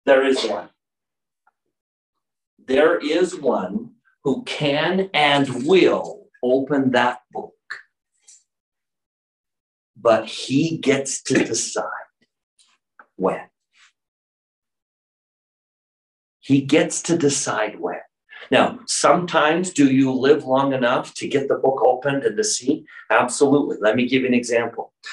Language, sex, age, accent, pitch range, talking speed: English, male, 50-69, American, 135-180 Hz, 110 wpm